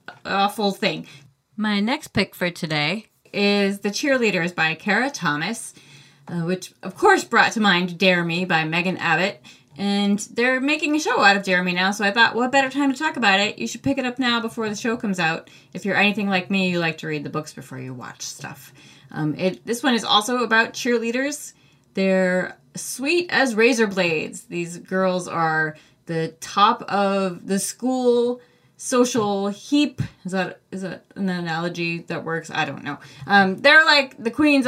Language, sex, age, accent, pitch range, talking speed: English, female, 20-39, American, 175-230 Hz, 190 wpm